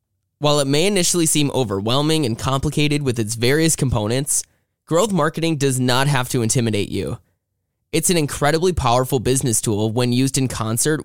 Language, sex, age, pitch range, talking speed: English, male, 10-29, 115-150 Hz, 165 wpm